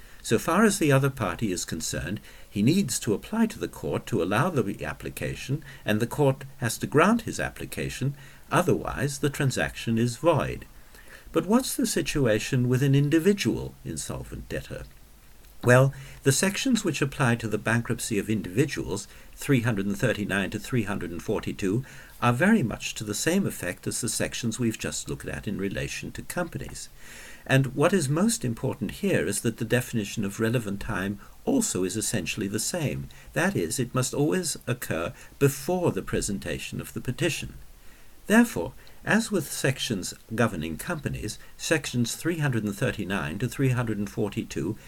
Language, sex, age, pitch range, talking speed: English, male, 60-79, 105-140 Hz, 150 wpm